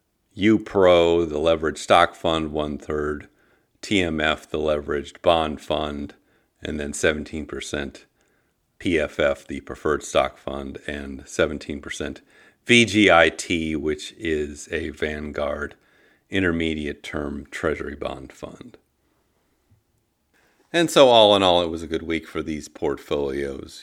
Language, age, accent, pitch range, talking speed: English, 50-69, American, 70-80 Hz, 110 wpm